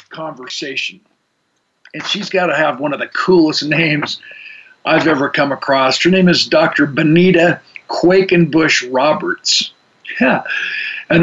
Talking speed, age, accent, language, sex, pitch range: 130 wpm, 50-69, American, English, male, 155-190 Hz